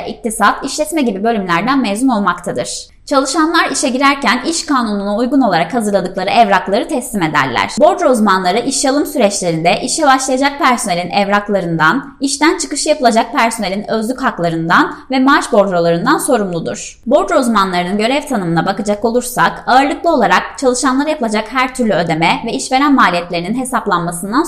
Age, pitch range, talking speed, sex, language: 20-39, 195-275 Hz, 130 wpm, female, Turkish